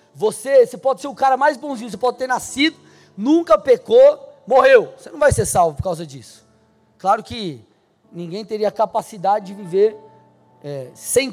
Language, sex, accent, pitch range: Portuguese, male, Brazilian, 215-290 Hz